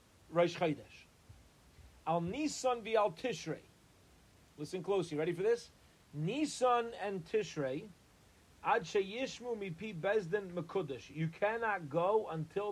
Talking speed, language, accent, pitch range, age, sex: 105 wpm, English, American, 140-200 Hz, 40-59, male